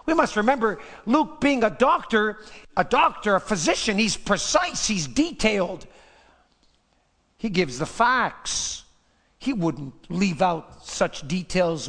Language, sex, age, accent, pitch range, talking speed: English, male, 50-69, American, 175-220 Hz, 120 wpm